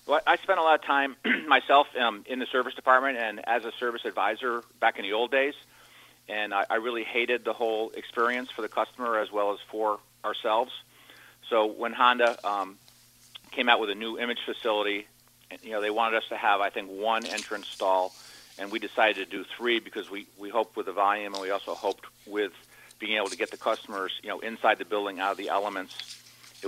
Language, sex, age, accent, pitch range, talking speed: English, male, 40-59, American, 100-120 Hz, 215 wpm